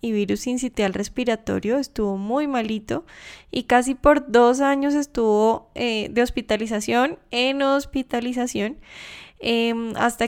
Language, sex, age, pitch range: English, female, 10-29, 215-250 Hz